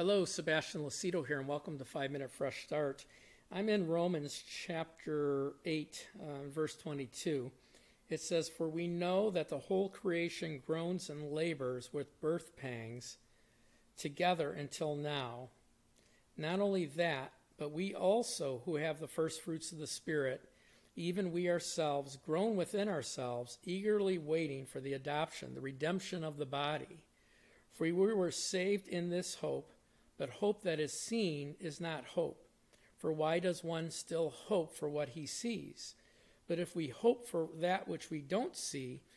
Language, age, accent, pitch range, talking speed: English, 50-69, American, 145-180 Hz, 155 wpm